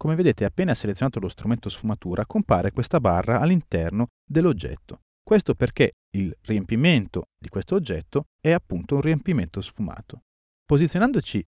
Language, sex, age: Italian, male, 40-59